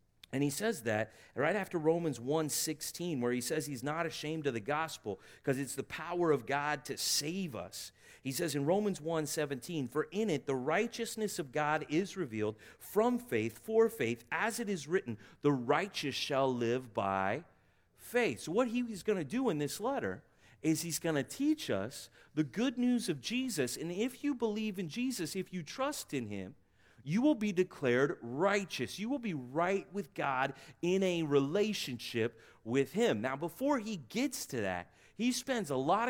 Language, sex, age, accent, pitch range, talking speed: English, male, 40-59, American, 135-205 Hz, 185 wpm